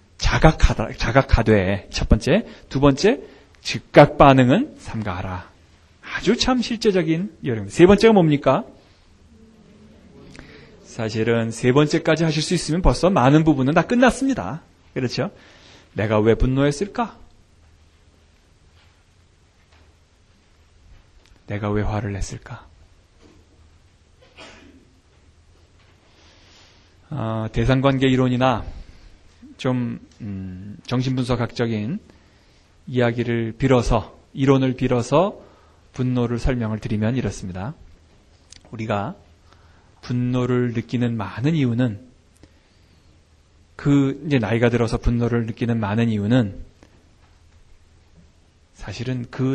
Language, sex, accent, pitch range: Korean, male, native, 85-130 Hz